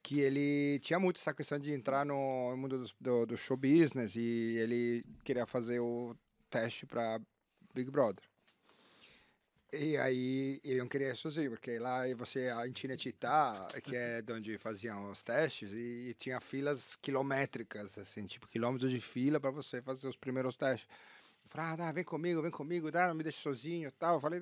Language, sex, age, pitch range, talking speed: Portuguese, male, 40-59, 130-180 Hz, 180 wpm